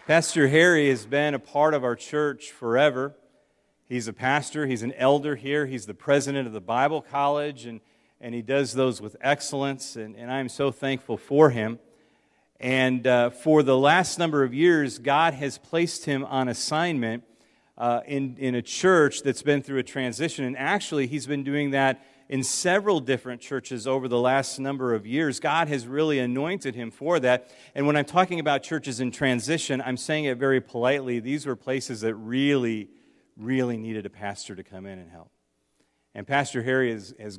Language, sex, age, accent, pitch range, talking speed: English, male, 40-59, American, 120-145 Hz, 190 wpm